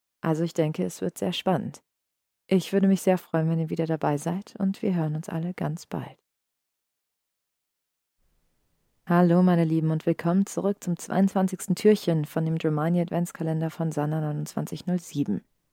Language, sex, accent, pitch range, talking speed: German, female, German, 140-170 Hz, 155 wpm